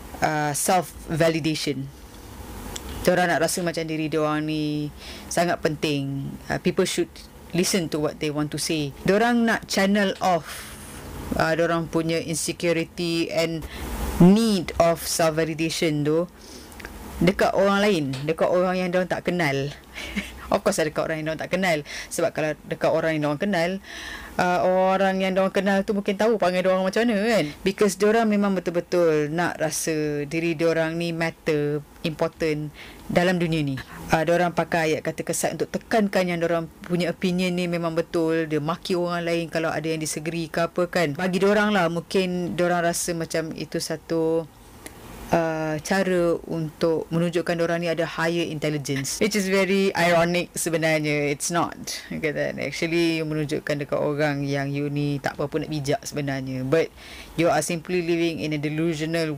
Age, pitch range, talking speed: 20-39, 155-180 Hz, 165 wpm